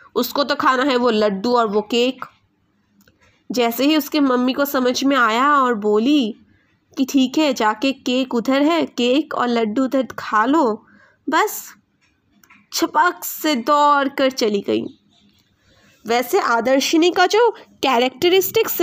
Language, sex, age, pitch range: Hindi, female, 20-39, 240-320 Hz